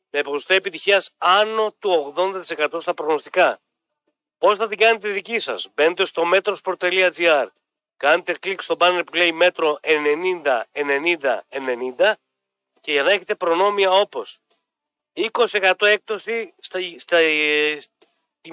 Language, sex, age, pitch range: Greek, male, 40-59, 175-225 Hz